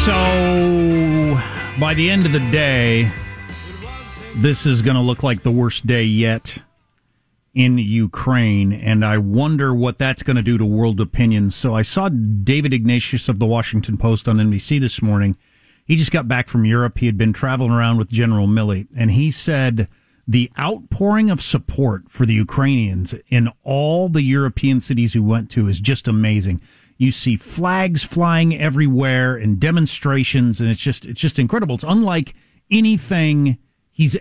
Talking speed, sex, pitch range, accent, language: 165 wpm, male, 110-145 Hz, American, English